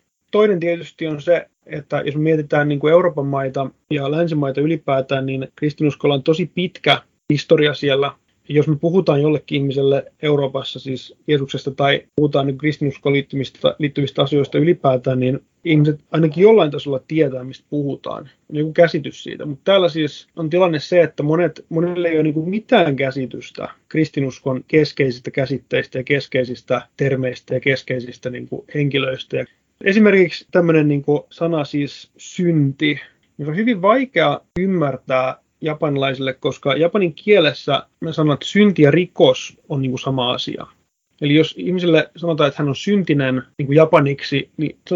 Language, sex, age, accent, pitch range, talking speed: Finnish, male, 30-49, native, 140-165 Hz, 135 wpm